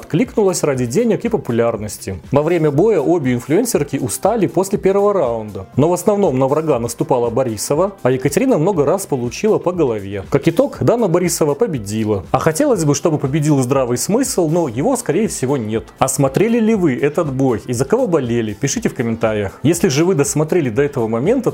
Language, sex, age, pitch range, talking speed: Russian, male, 30-49, 125-180 Hz, 180 wpm